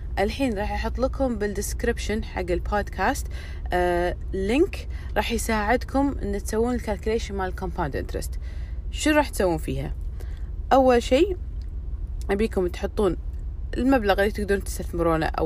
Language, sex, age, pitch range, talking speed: Arabic, female, 20-39, 160-235 Hz, 115 wpm